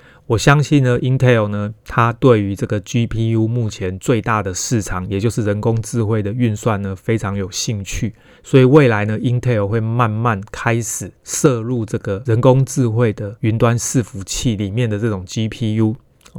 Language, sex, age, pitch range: Chinese, male, 30-49, 105-125 Hz